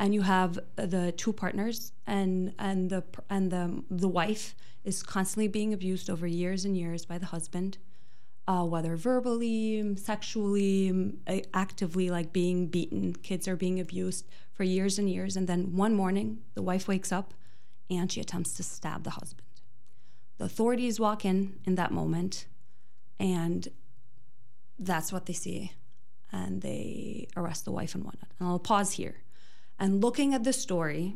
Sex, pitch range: female, 170-195 Hz